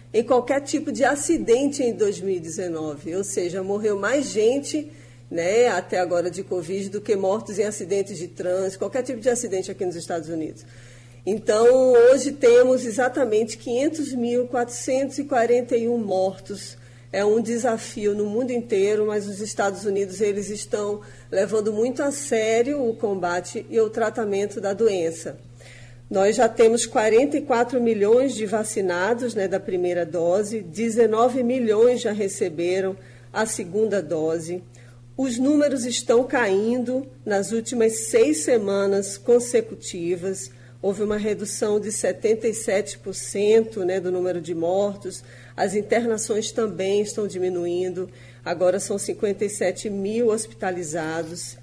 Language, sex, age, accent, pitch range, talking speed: Portuguese, female, 40-59, Brazilian, 185-235 Hz, 125 wpm